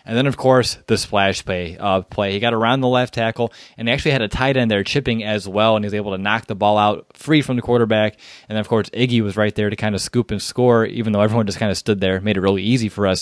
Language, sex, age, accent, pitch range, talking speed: English, male, 20-39, American, 100-125 Hz, 300 wpm